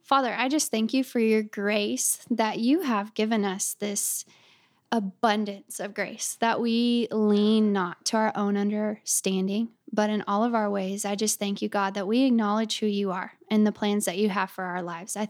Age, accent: 10-29, American